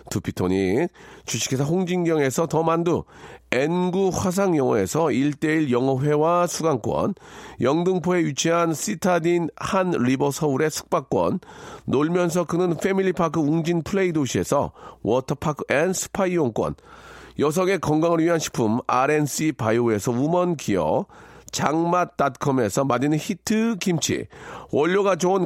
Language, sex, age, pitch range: Korean, male, 40-59, 140-185 Hz